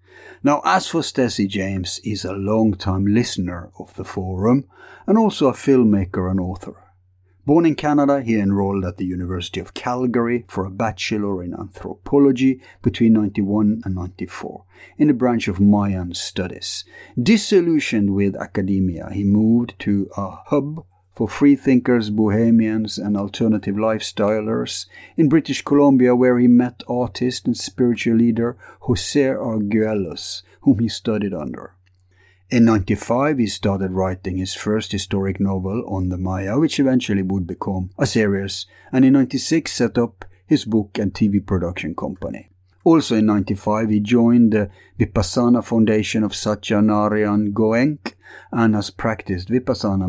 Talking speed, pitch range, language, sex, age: 145 wpm, 95-120 Hz, English, male, 50-69